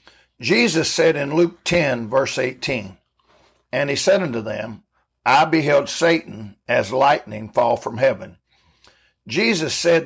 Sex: male